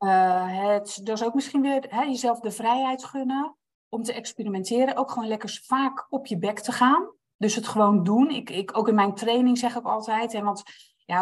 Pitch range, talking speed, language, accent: 190-245 Hz, 205 wpm, Dutch, Dutch